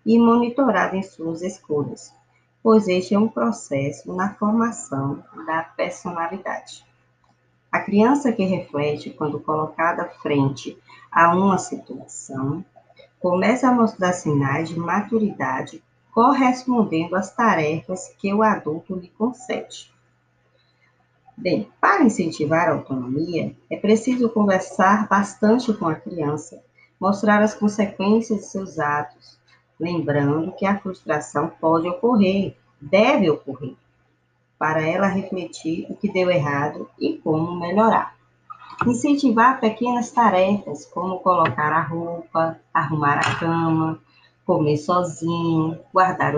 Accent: Brazilian